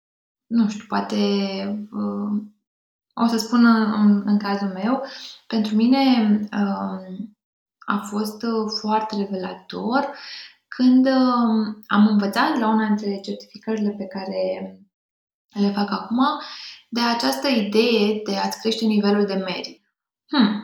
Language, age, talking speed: Romanian, 20-39, 110 wpm